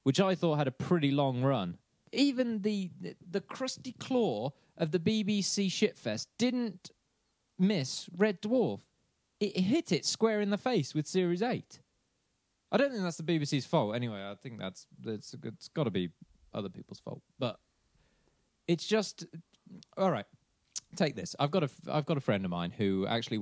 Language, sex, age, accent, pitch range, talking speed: English, male, 20-39, British, 110-180 Hz, 170 wpm